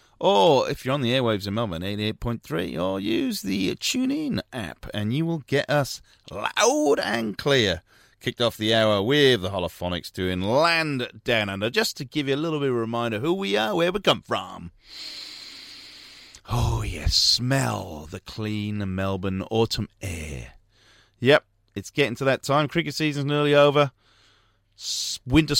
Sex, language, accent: male, English, British